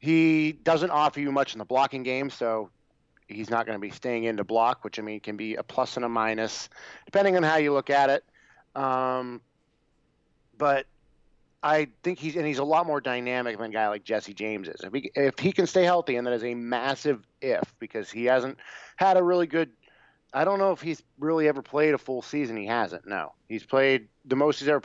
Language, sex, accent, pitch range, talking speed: English, male, American, 115-150 Hz, 230 wpm